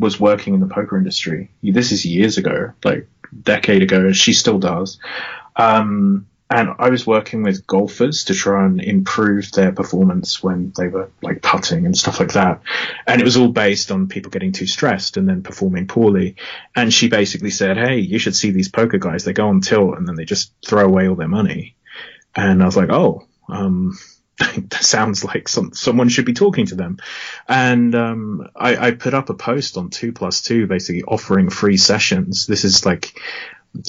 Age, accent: 30-49, British